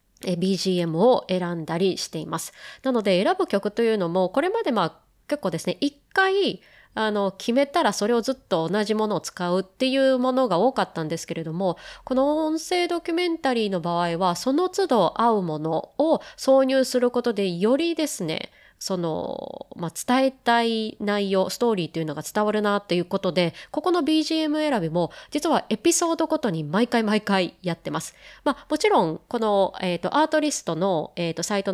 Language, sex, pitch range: Japanese, female, 180-285 Hz